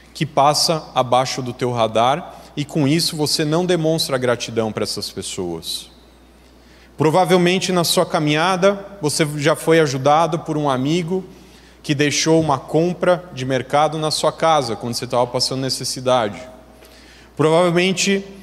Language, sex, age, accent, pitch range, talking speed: Portuguese, male, 30-49, Brazilian, 145-180 Hz, 135 wpm